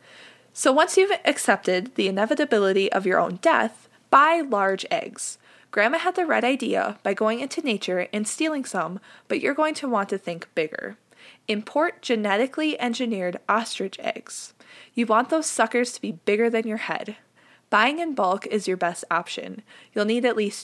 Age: 20-39